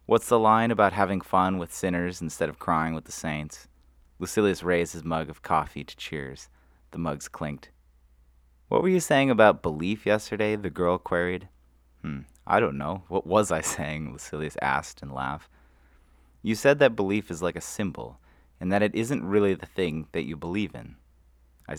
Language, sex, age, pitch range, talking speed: English, male, 30-49, 65-95 Hz, 185 wpm